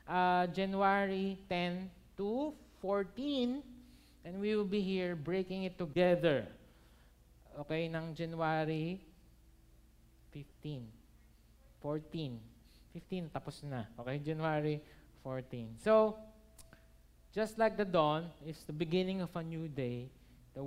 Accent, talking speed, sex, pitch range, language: native, 105 wpm, male, 130-185 Hz, Filipino